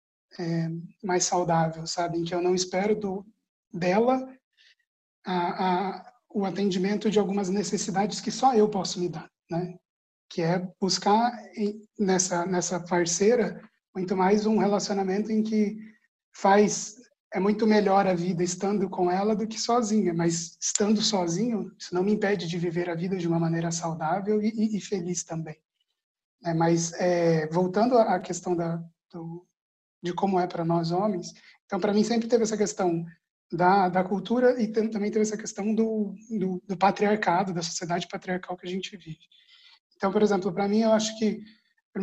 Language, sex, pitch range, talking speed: Portuguese, male, 180-210 Hz, 170 wpm